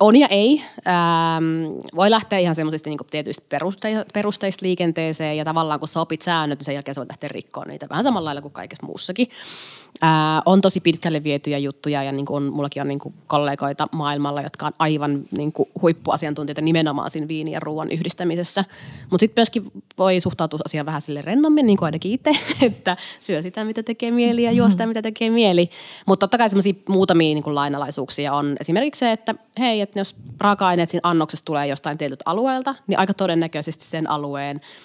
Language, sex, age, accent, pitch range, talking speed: Finnish, female, 30-49, native, 150-195 Hz, 180 wpm